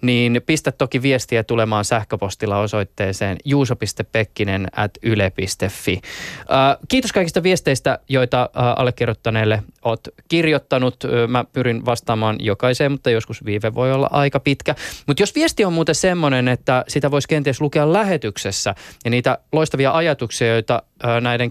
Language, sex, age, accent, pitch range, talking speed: Finnish, male, 20-39, native, 105-140 Hz, 125 wpm